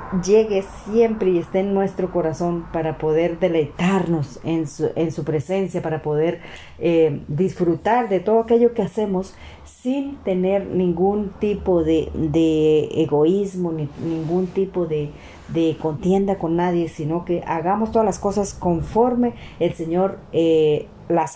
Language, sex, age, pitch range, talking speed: Spanish, female, 40-59, 160-195 Hz, 140 wpm